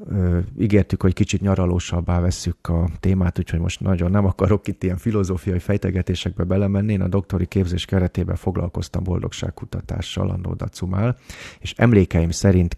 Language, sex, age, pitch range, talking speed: Hungarian, male, 30-49, 90-105 Hz, 140 wpm